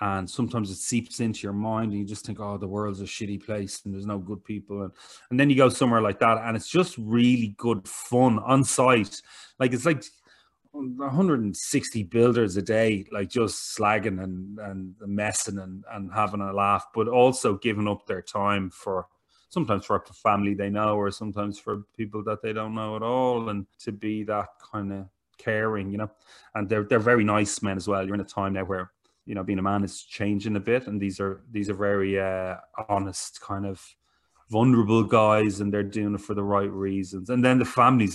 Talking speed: 210 wpm